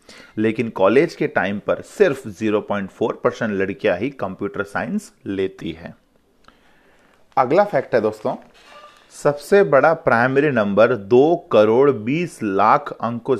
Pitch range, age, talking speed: 125-165 Hz, 30-49, 120 wpm